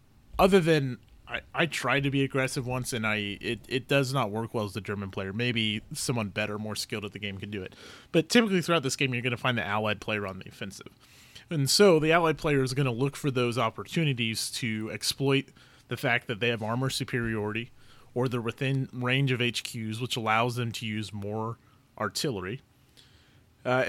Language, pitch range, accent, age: English, 105-140 Hz, American, 30-49